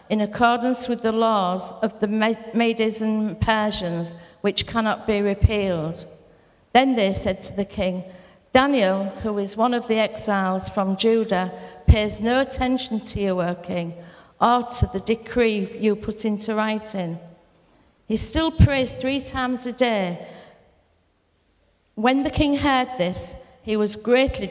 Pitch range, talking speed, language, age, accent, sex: 190-235 Hz, 145 wpm, English, 50-69, British, female